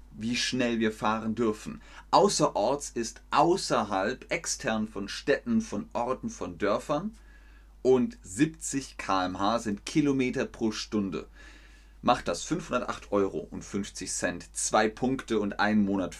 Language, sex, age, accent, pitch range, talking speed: German, male, 30-49, German, 100-120 Hz, 125 wpm